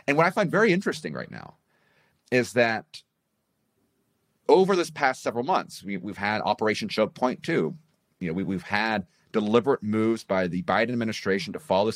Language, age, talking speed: English, 30-49, 175 wpm